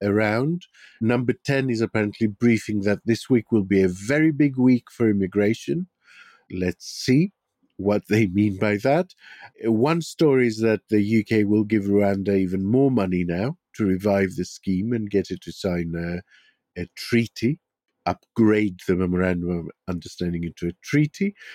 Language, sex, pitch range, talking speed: English, male, 95-130 Hz, 160 wpm